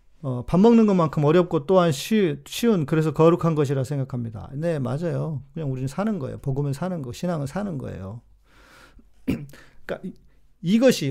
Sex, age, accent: male, 40-59, native